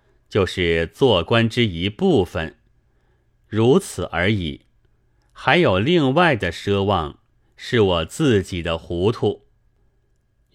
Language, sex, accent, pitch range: Chinese, male, native, 90-125 Hz